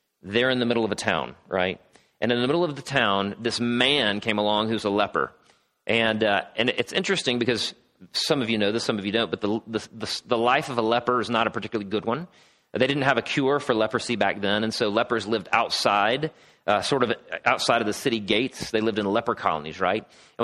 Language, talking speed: English, 235 wpm